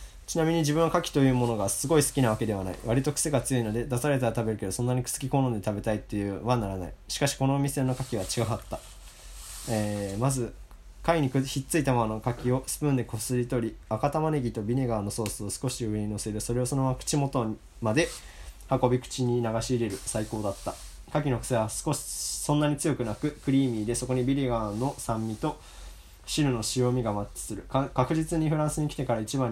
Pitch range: 105-135 Hz